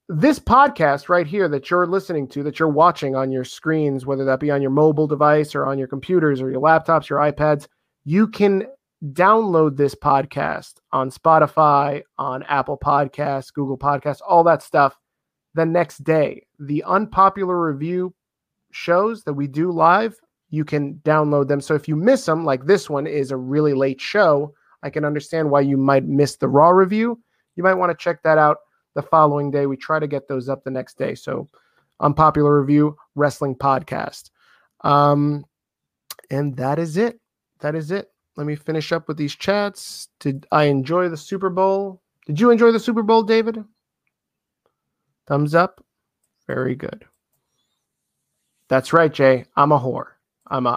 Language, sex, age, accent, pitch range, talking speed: English, male, 30-49, American, 140-175 Hz, 175 wpm